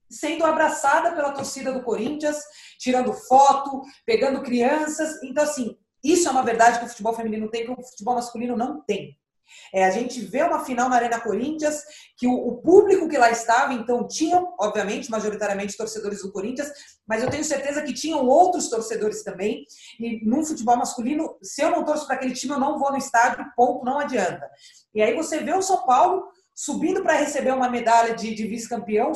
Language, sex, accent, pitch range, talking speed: Portuguese, female, Brazilian, 235-305 Hz, 190 wpm